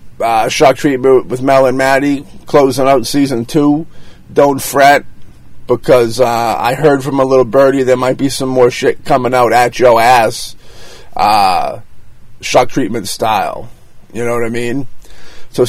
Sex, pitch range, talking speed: male, 125-150 Hz, 160 wpm